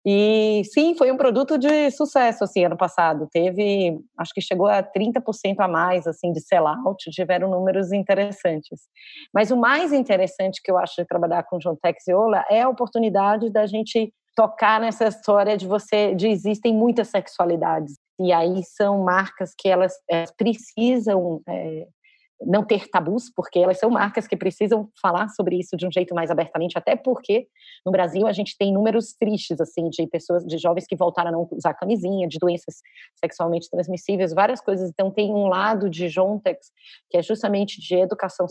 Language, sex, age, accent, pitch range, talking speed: Portuguese, female, 30-49, Brazilian, 175-215 Hz, 180 wpm